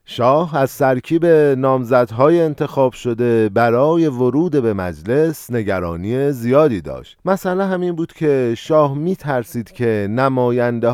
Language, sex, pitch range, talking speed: Persian, male, 115-150 Hz, 120 wpm